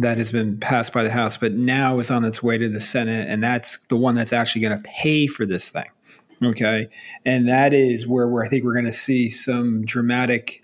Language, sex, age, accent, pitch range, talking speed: English, male, 30-49, American, 115-140 Hz, 230 wpm